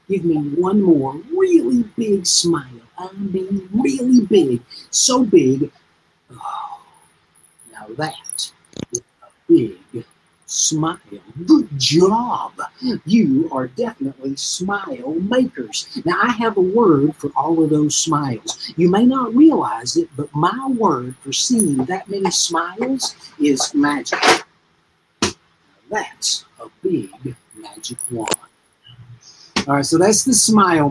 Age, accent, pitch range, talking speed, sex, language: 50-69, American, 135-200 Hz, 120 wpm, male, English